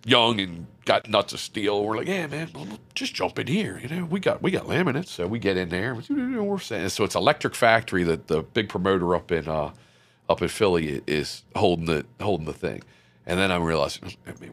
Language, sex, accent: English, male, American